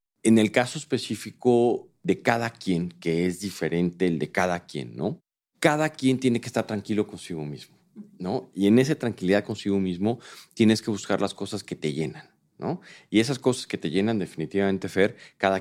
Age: 40-59